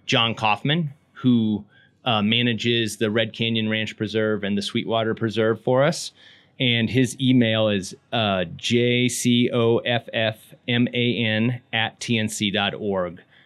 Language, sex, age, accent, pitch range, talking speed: English, male, 30-49, American, 105-125 Hz, 105 wpm